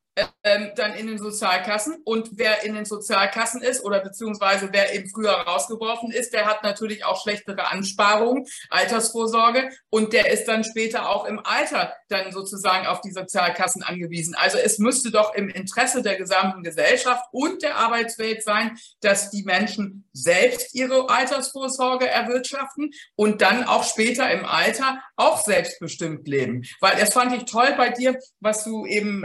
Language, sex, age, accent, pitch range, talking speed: German, female, 50-69, German, 195-250 Hz, 160 wpm